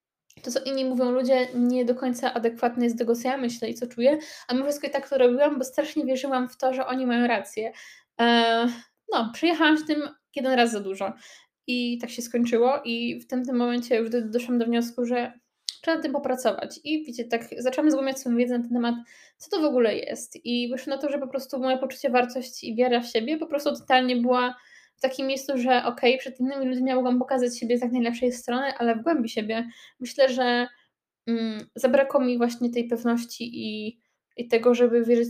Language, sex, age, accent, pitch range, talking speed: Polish, female, 20-39, native, 235-260 Hz, 215 wpm